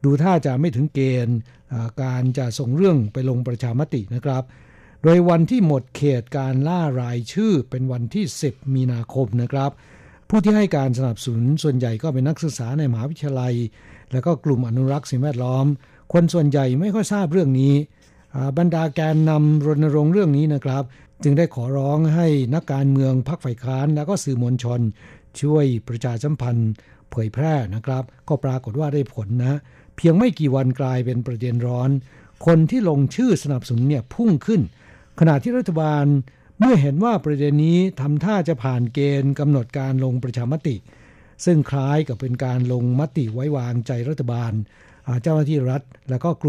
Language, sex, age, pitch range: Thai, male, 60-79, 125-155 Hz